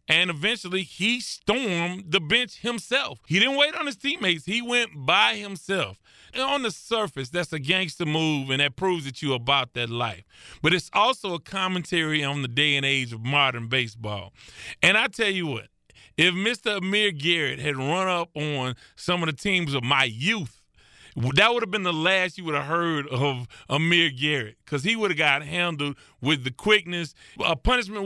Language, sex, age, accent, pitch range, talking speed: English, male, 30-49, American, 145-200 Hz, 190 wpm